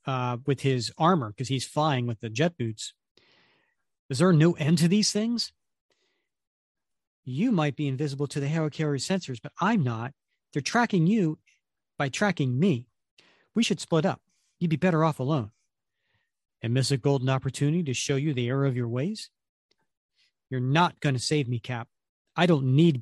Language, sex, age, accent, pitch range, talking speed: English, male, 40-59, American, 125-165 Hz, 180 wpm